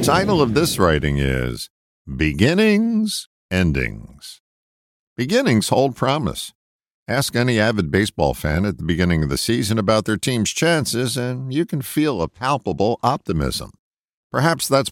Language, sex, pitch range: English, male, 80-125 Hz